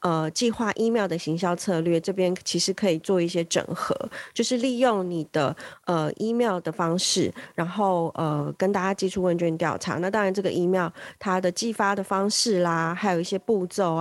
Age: 30-49